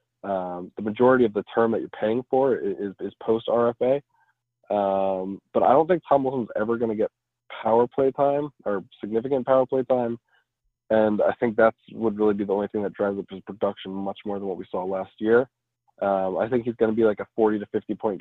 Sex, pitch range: male, 100-120 Hz